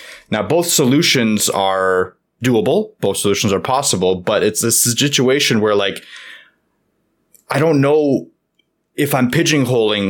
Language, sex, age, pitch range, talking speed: English, male, 20-39, 95-125 Hz, 125 wpm